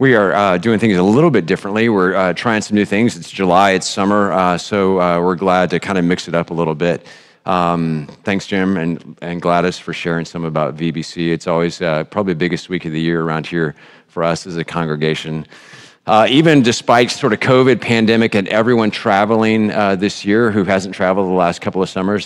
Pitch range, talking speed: 85-110 Hz, 220 wpm